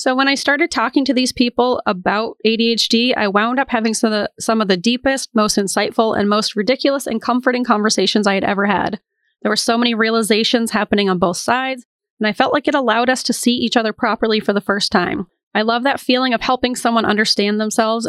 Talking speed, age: 215 wpm, 30-49